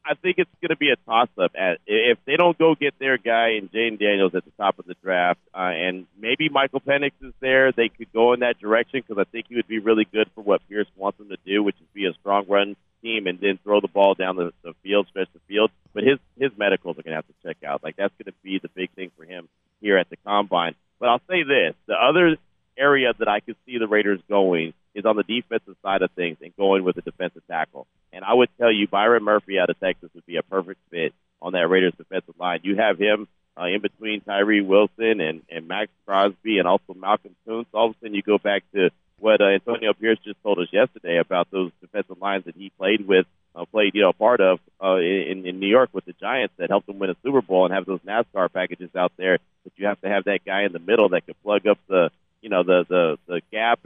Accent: American